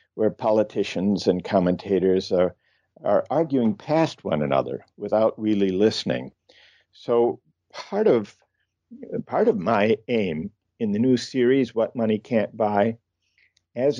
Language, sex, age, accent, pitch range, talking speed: English, male, 50-69, American, 100-140 Hz, 125 wpm